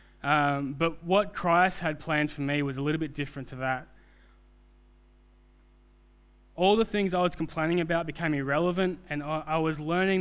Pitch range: 125-160 Hz